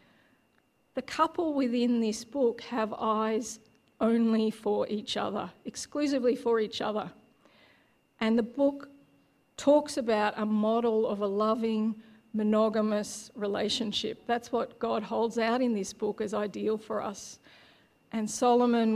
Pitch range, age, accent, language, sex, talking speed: 215-255 Hz, 50-69, Australian, English, female, 130 wpm